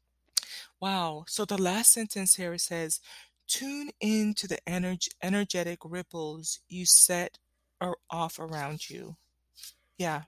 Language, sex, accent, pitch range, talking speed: English, female, American, 165-200 Hz, 115 wpm